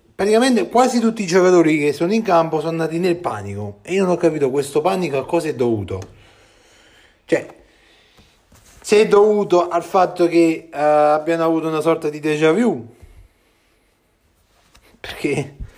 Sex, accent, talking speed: male, native, 150 wpm